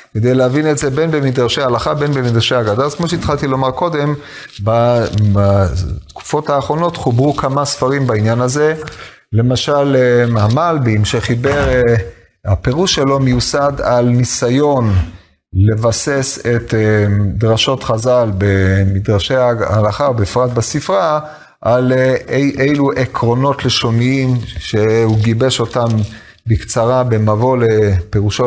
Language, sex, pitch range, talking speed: Hebrew, male, 105-130 Hz, 105 wpm